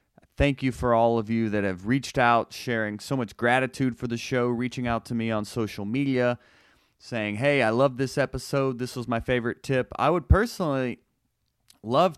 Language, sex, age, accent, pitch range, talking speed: English, male, 30-49, American, 105-130 Hz, 190 wpm